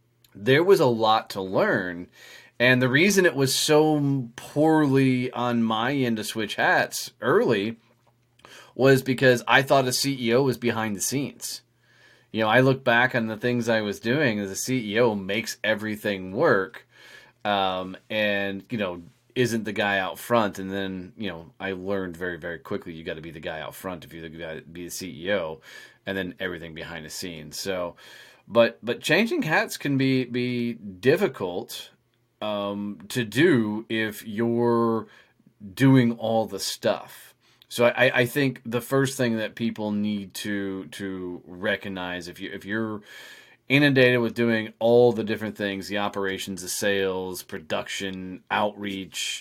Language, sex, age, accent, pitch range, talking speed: English, male, 30-49, American, 100-125 Hz, 165 wpm